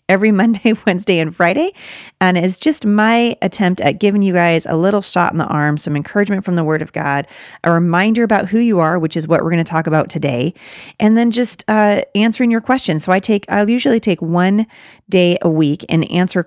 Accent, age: American, 30-49